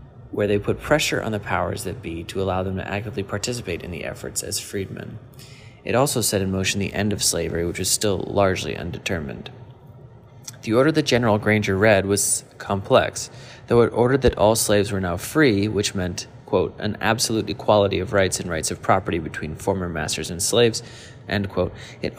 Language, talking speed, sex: English, 190 wpm, male